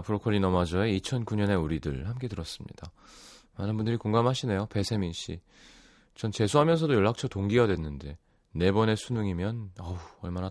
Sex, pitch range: male, 90-135 Hz